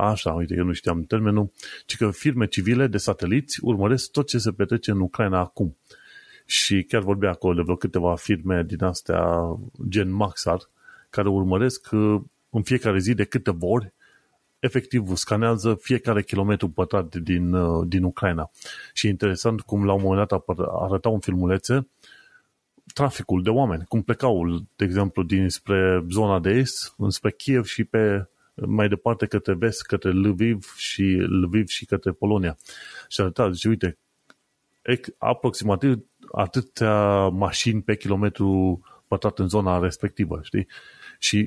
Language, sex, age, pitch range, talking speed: Romanian, male, 30-49, 95-120 Hz, 150 wpm